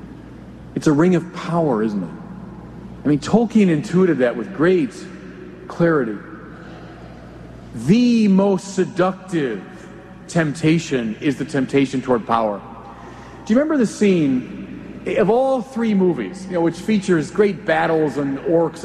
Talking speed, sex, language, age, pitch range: 130 wpm, male, English, 40-59, 140-200 Hz